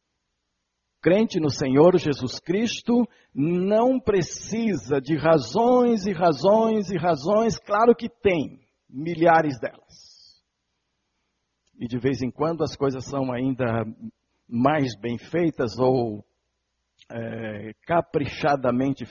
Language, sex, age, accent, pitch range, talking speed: Portuguese, male, 60-79, Brazilian, 125-200 Hz, 105 wpm